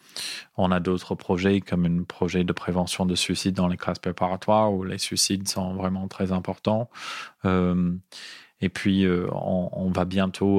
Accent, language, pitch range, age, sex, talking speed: French, French, 90-95 Hz, 20-39, male, 170 wpm